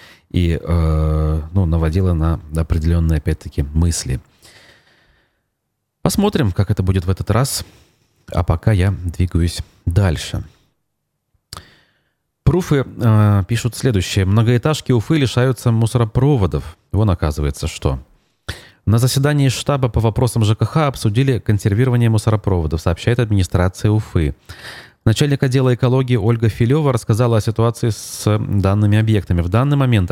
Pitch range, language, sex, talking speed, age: 95-120 Hz, Russian, male, 110 wpm, 30-49